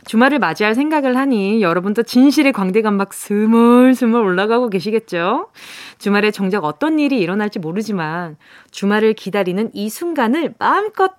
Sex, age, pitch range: female, 20-39, 210-315 Hz